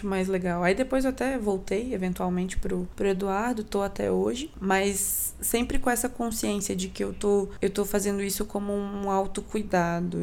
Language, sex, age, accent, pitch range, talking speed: Portuguese, female, 20-39, Brazilian, 180-205 Hz, 175 wpm